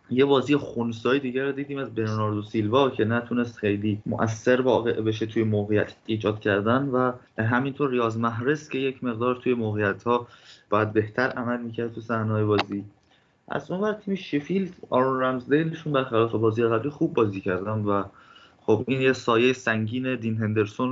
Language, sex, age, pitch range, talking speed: Persian, male, 20-39, 110-130 Hz, 165 wpm